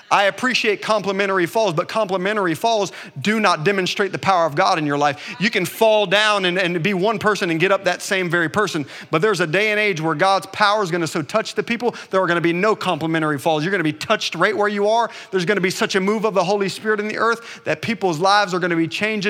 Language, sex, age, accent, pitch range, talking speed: English, male, 40-59, American, 175-220 Hz, 275 wpm